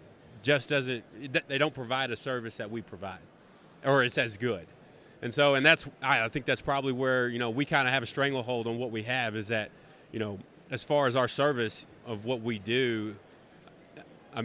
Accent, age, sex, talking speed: American, 30-49, male, 205 wpm